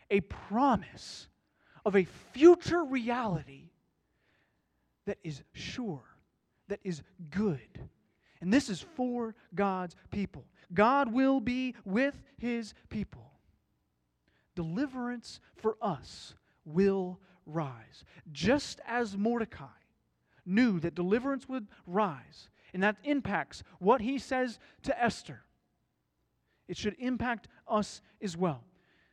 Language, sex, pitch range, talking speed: English, male, 160-245 Hz, 105 wpm